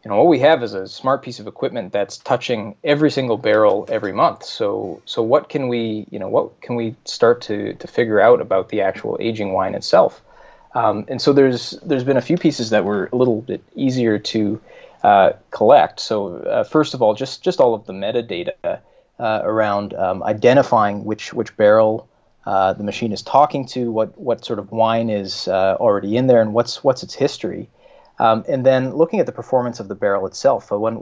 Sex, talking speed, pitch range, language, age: male, 215 wpm, 105-125 Hz, English, 20-39